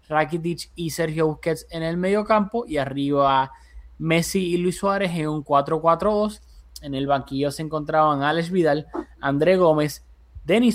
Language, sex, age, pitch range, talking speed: Spanish, male, 20-39, 140-180 Hz, 150 wpm